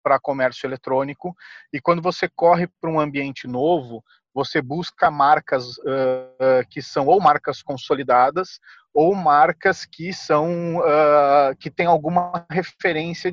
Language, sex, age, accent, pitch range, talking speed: Portuguese, male, 40-59, Brazilian, 140-175 Hz, 115 wpm